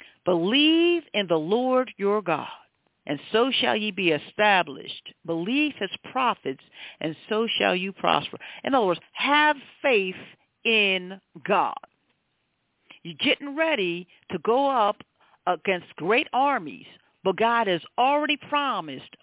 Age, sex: 50-69, female